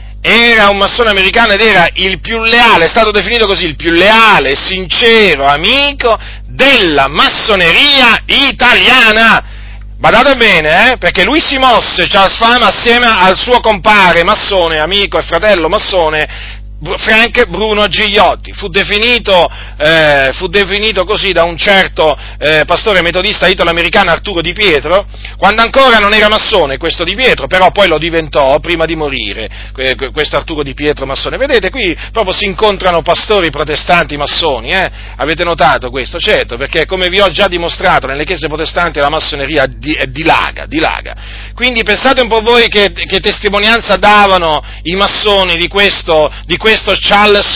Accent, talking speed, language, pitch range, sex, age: native, 155 wpm, Italian, 150-205 Hz, male, 40-59